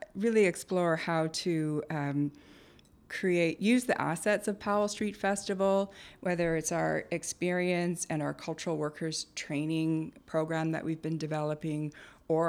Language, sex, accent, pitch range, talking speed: English, female, American, 160-185 Hz, 135 wpm